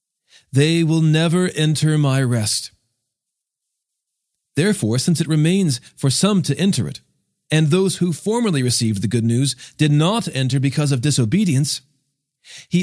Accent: American